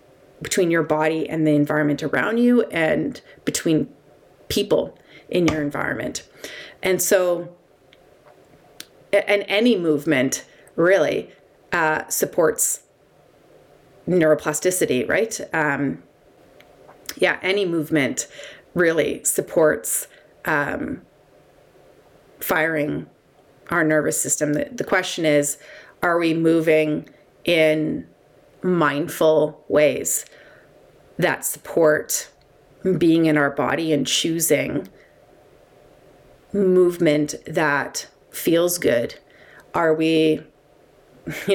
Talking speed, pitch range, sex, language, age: 85 wpm, 150-175 Hz, female, English, 30-49